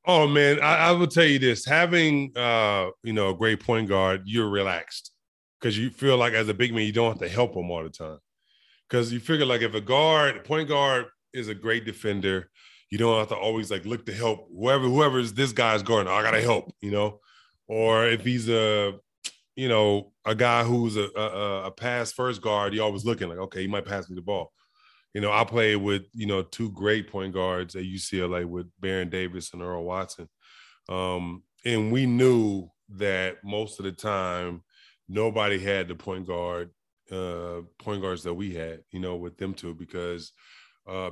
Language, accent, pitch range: English, American, 95-115 Hz